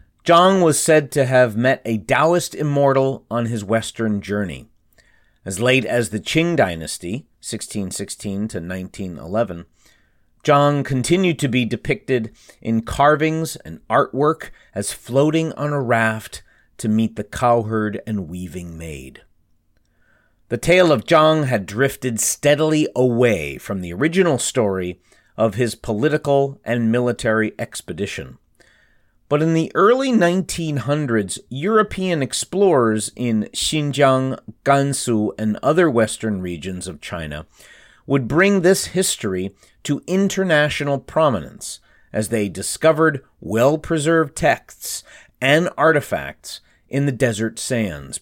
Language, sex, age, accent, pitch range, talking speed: English, male, 40-59, American, 105-150 Hz, 120 wpm